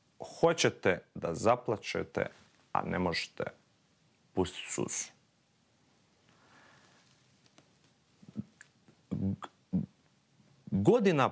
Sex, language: male, Croatian